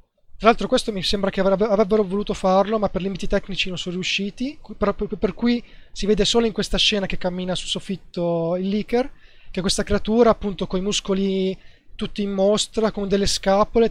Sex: male